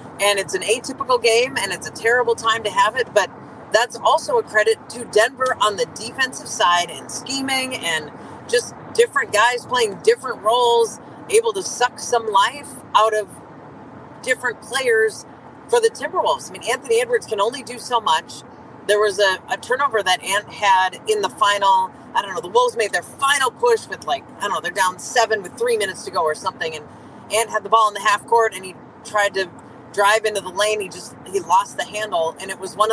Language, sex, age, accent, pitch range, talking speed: English, female, 30-49, American, 200-300 Hz, 210 wpm